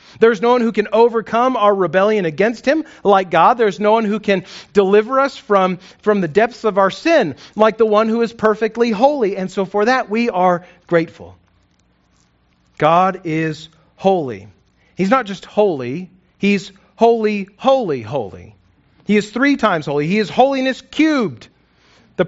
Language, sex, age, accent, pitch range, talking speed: English, male, 40-59, American, 170-240 Hz, 165 wpm